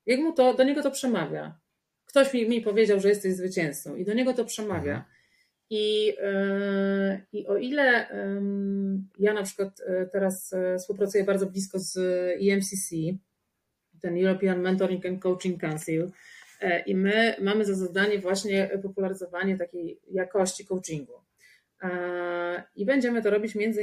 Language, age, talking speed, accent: Polish, 30-49, 130 wpm, native